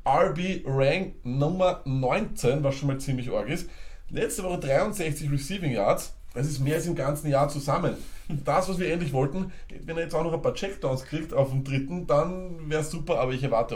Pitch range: 125-150 Hz